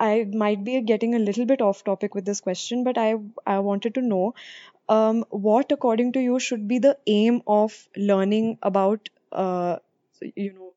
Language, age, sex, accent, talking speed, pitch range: English, 20-39, female, Indian, 185 wpm, 190-220 Hz